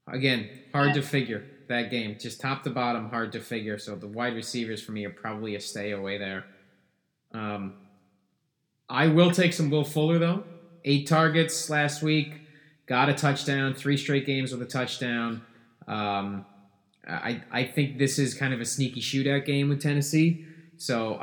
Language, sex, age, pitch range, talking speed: English, male, 20-39, 115-150 Hz, 170 wpm